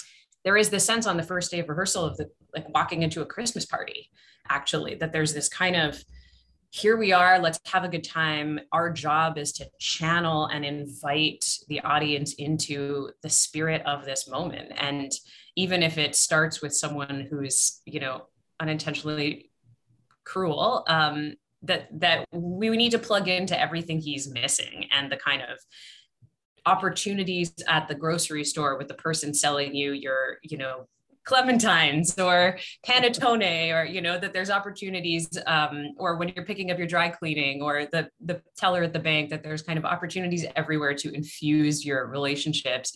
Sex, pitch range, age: female, 145-175 Hz, 20-39